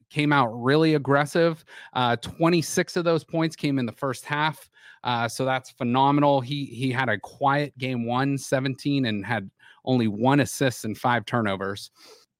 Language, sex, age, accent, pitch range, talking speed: English, male, 30-49, American, 115-145 Hz, 165 wpm